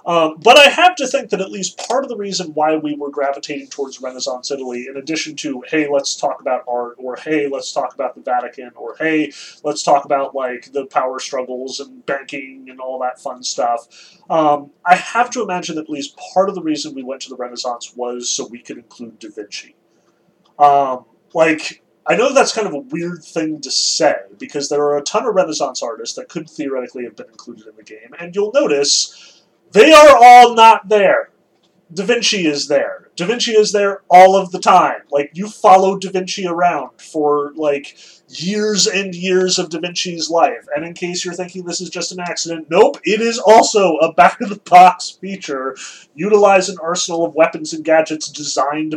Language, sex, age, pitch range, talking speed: English, male, 30-49, 140-195 Hz, 200 wpm